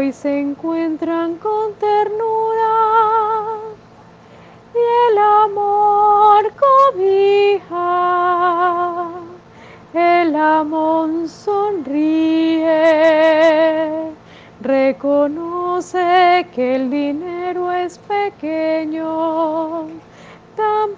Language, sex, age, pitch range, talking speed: Spanish, female, 30-49, 315-395 Hz, 55 wpm